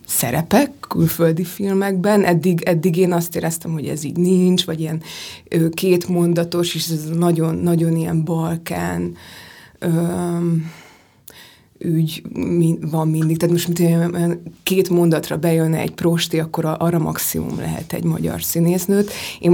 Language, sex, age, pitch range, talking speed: Hungarian, female, 20-39, 165-180 Hz, 130 wpm